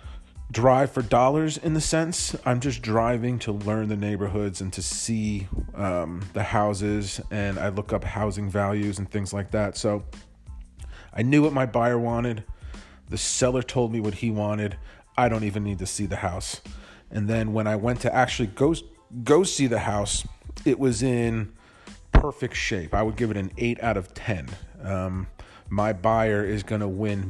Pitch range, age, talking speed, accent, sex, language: 95-120 Hz, 30-49, 185 wpm, American, male, English